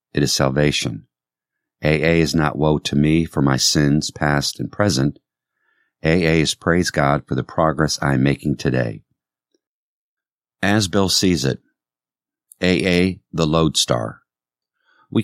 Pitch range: 70-85 Hz